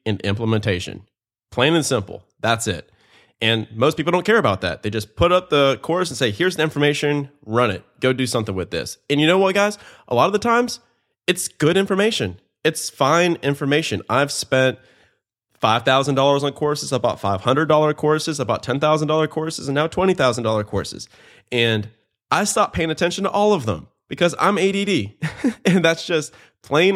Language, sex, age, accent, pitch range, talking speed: English, male, 20-39, American, 115-160 Hz, 175 wpm